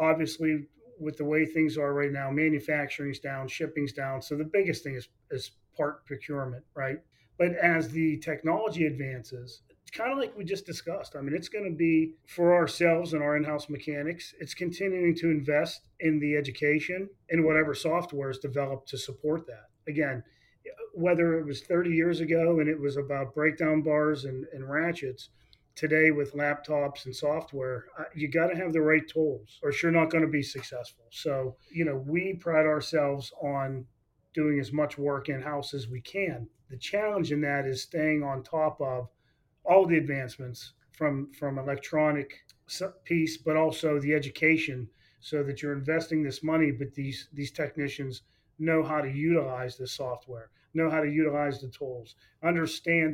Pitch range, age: 135-160 Hz, 40-59